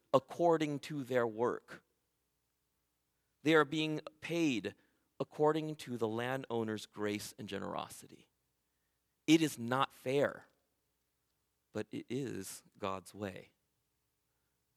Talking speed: 100 wpm